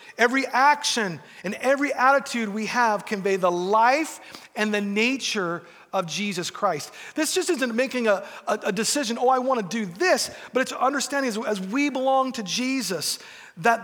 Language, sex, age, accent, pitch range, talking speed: English, male, 40-59, American, 195-255 Hz, 175 wpm